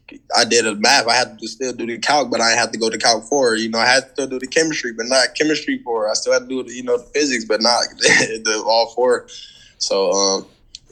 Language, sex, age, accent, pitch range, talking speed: English, male, 20-39, American, 120-160 Hz, 265 wpm